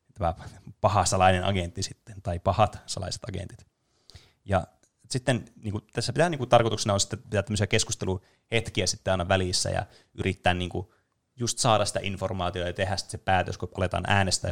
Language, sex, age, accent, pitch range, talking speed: Finnish, male, 20-39, native, 90-110 Hz, 170 wpm